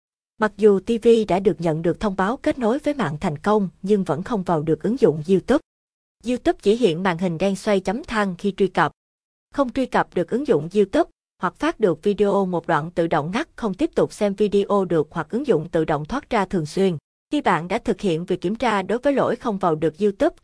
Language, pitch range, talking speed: Vietnamese, 180-235 Hz, 240 wpm